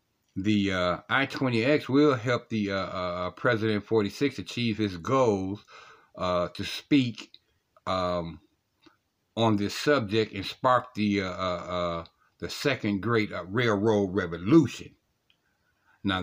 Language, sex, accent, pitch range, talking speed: English, male, American, 95-125 Hz, 120 wpm